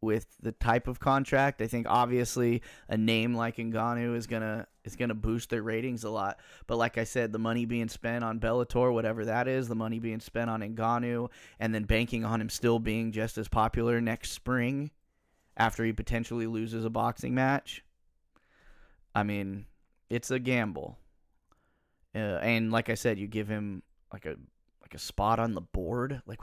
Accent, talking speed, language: American, 185 wpm, English